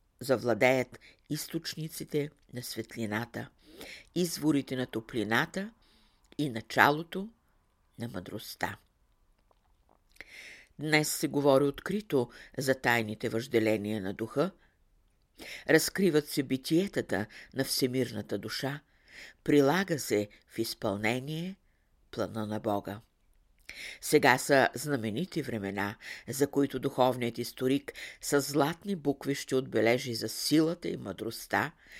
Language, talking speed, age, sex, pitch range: Bulgarian, 95 wpm, 50-69, female, 110-145 Hz